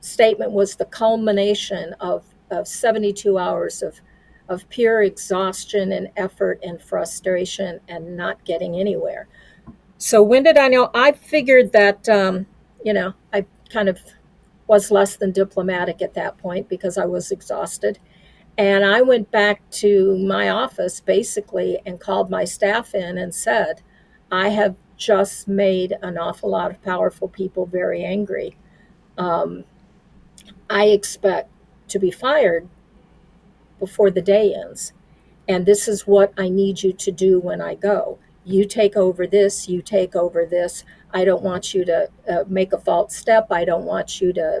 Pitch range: 185-205 Hz